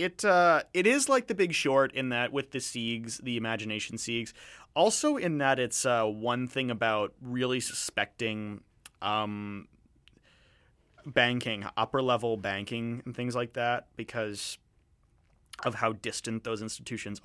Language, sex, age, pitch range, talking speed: English, male, 30-49, 110-140 Hz, 140 wpm